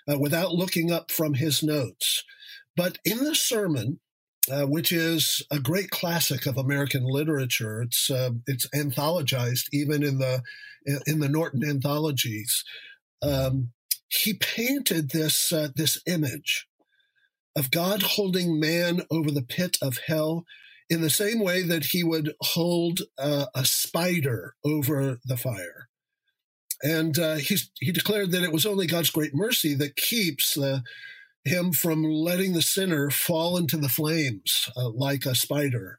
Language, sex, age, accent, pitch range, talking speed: English, male, 50-69, American, 140-180 Hz, 145 wpm